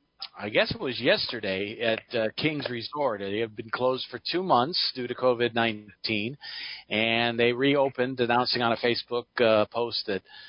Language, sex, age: English, male, 40-59